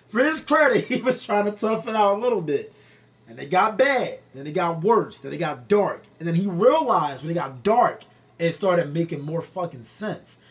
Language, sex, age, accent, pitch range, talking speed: English, male, 30-49, American, 140-195 Hz, 225 wpm